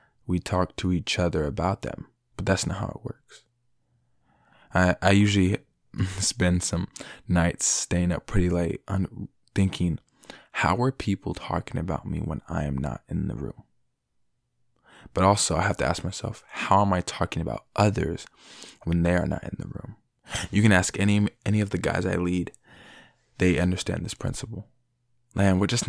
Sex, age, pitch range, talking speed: male, 20-39, 90-110 Hz, 175 wpm